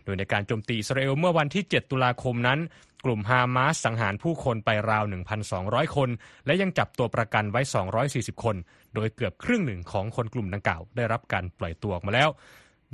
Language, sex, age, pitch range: Thai, male, 20-39, 110-145 Hz